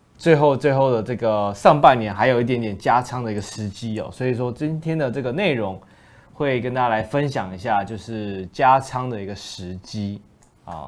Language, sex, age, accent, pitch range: Chinese, male, 20-39, native, 105-135 Hz